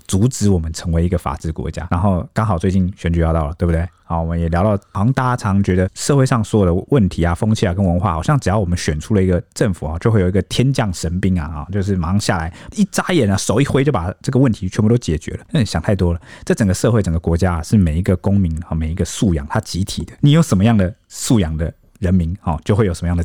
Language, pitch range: Chinese, 85-110 Hz